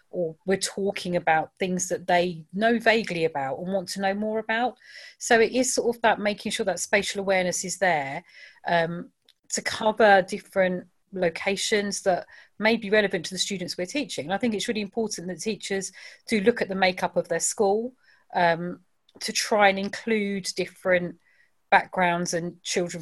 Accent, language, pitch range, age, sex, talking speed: British, English, 175-210 Hz, 40-59, female, 175 wpm